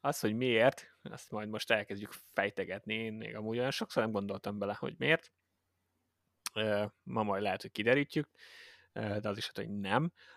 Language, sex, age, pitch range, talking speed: Hungarian, male, 20-39, 100-110 Hz, 160 wpm